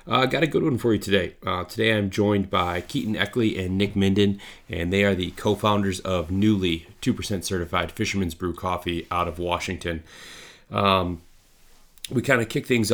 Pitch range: 90-105 Hz